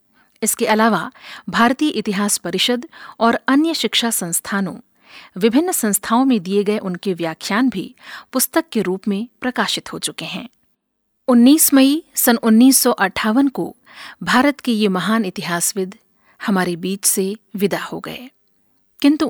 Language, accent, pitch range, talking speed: Hindi, native, 200-255 Hz, 130 wpm